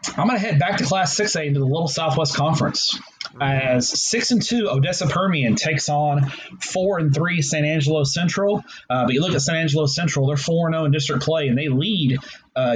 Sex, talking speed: male, 210 wpm